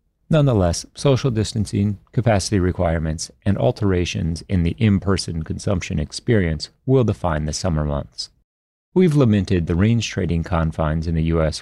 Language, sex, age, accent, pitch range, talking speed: English, male, 40-59, American, 80-110 Hz, 135 wpm